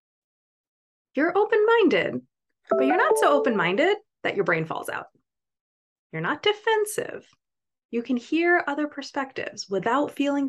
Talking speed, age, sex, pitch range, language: 125 wpm, 20-39, female, 205-295 Hz, English